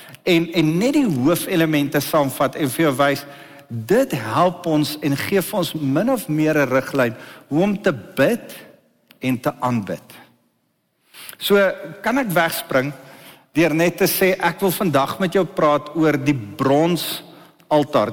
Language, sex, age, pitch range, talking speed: English, male, 60-79, 145-190 Hz, 150 wpm